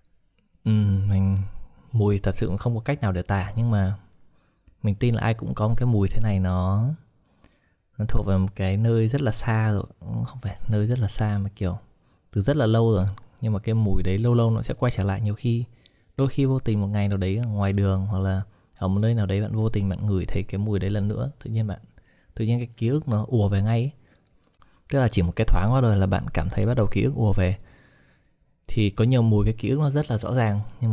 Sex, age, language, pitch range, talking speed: male, 20-39, Vietnamese, 95-120 Hz, 260 wpm